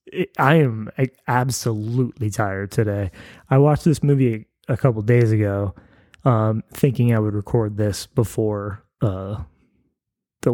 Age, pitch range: 20-39, 110-145 Hz